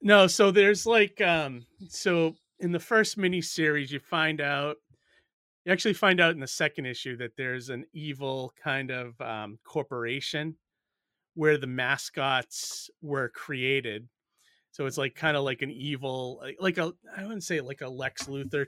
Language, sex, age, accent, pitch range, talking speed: English, male, 30-49, American, 125-160 Hz, 165 wpm